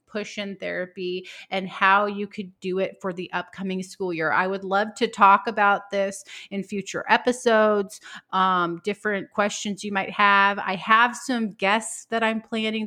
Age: 30-49